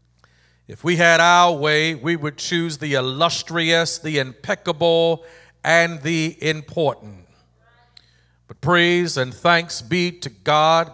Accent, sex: American, male